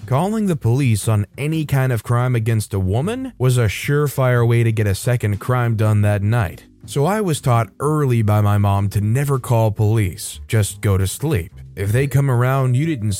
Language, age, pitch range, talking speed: English, 20-39, 105-135 Hz, 205 wpm